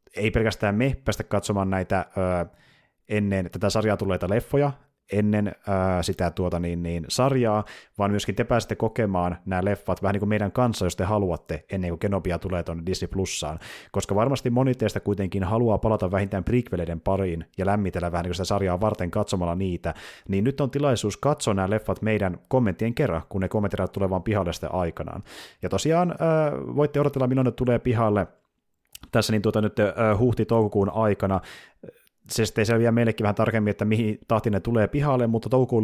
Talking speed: 180 wpm